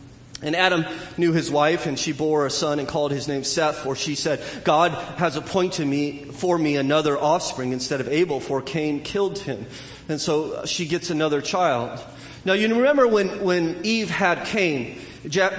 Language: English